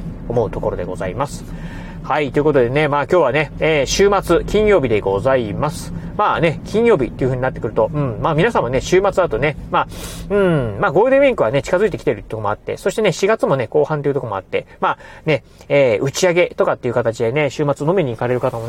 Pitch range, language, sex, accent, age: 135-200 Hz, Japanese, male, native, 40-59